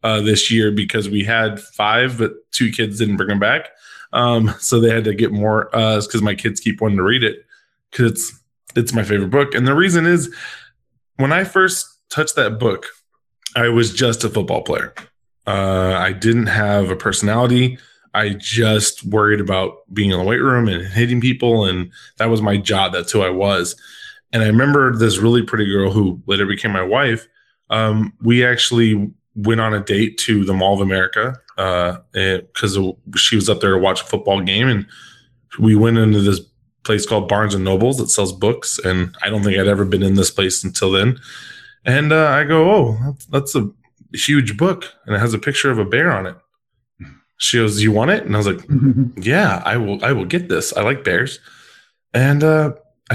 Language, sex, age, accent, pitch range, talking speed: English, male, 20-39, American, 105-125 Hz, 200 wpm